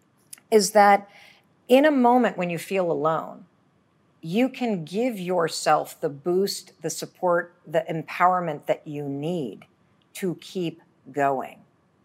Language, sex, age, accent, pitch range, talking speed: English, female, 50-69, American, 155-210 Hz, 125 wpm